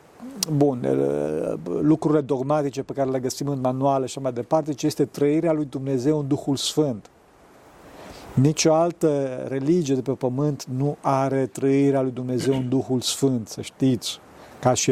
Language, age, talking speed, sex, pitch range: Romanian, 50-69, 155 wpm, male, 125-150 Hz